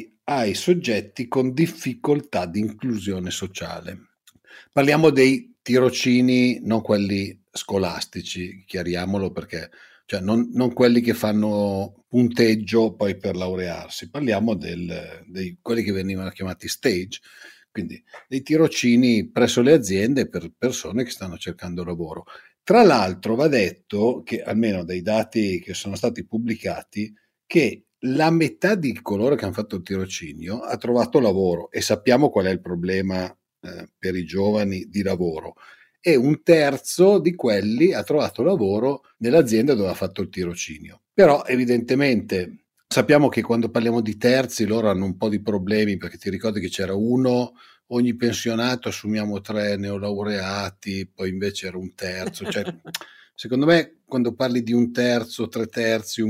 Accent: native